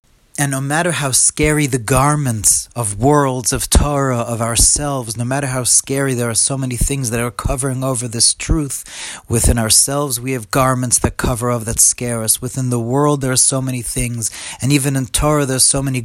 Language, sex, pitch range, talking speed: English, male, 120-140 Hz, 205 wpm